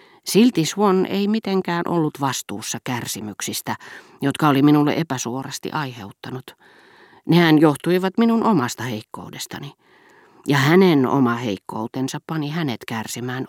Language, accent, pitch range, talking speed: Finnish, native, 130-175 Hz, 105 wpm